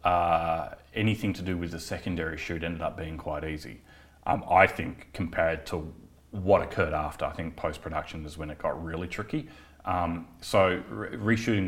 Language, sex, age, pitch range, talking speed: English, male, 30-49, 80-95 Hz, 170 wpm